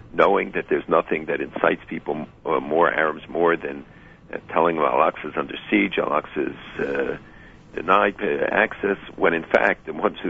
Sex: male